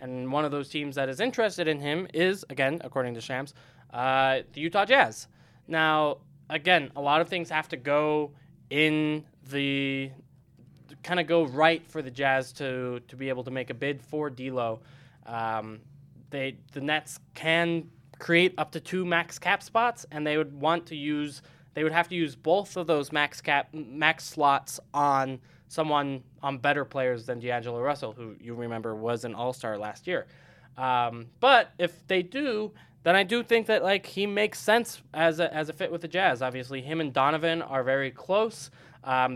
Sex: male